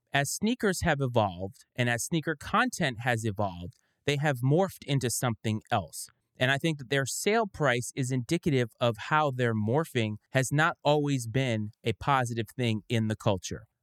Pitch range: 120-150 Hz